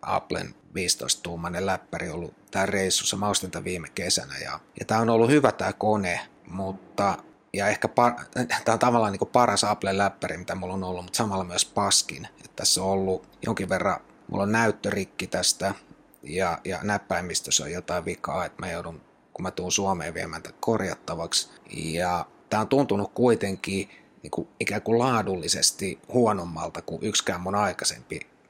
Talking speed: 160 wpm